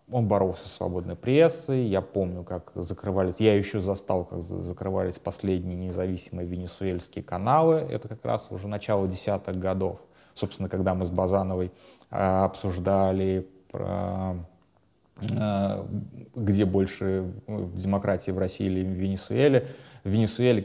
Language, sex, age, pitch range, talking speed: Russian, male, 30-49, 95-110 Hz, 120 wpm